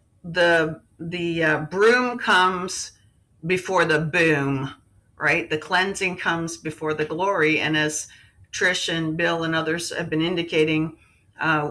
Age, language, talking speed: 40-59, English, 135 wpm